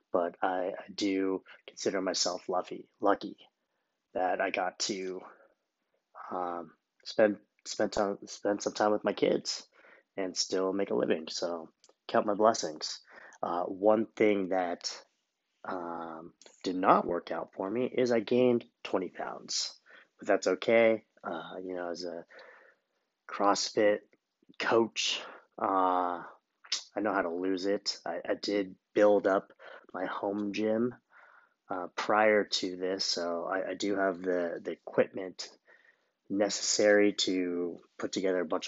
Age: 30-49